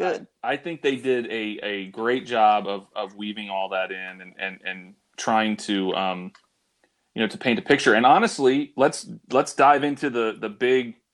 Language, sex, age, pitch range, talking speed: English, male, 30-49, 100-125 Hz, 195 wpm